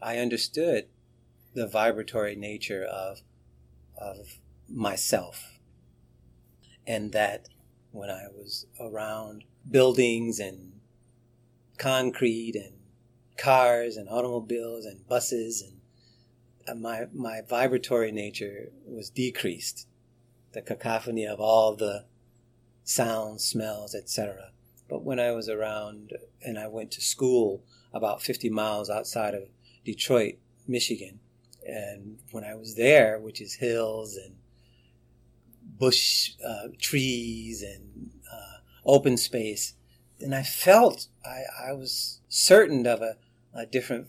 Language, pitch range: English, 105-120 Hz